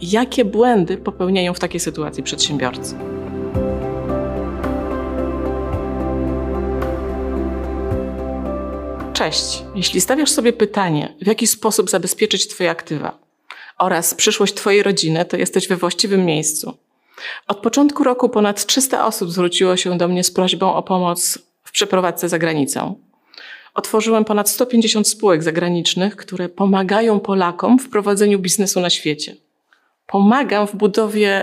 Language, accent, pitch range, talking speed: Polish, native, 165-215 Hz, 115 wpm